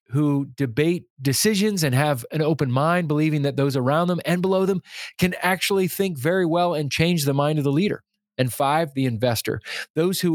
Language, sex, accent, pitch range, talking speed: English, male, American, 130-165 Hz, 195 wpm